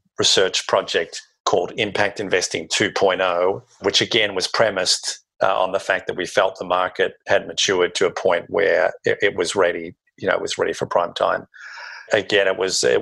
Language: English